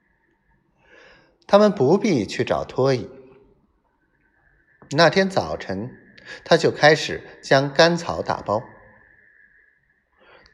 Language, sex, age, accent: Chinese, male, 50-69, native